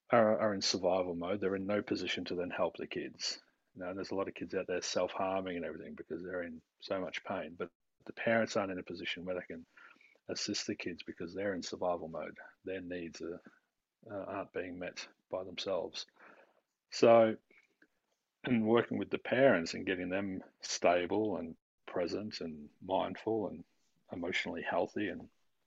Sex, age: male, 40-59